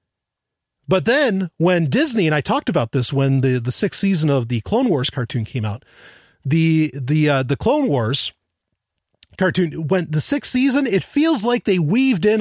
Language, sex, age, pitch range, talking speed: English, male, 30-49, 135-200 Hz, 185 wpm